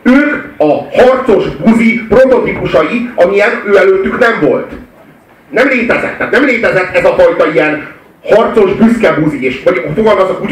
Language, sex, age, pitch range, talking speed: Hungarian, male, 30-49, 175-290 Hz, 145 wpm